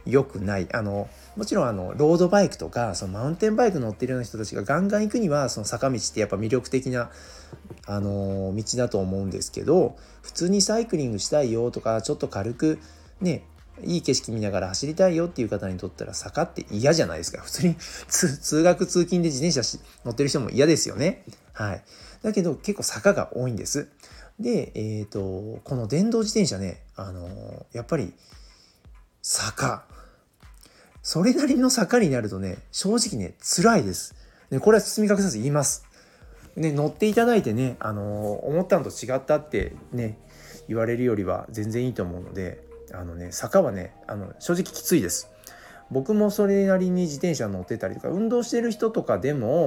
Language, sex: Japanese, male